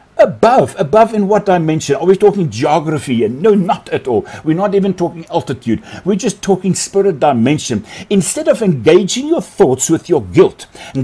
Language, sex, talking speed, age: English, male, 180 wpm, 60-79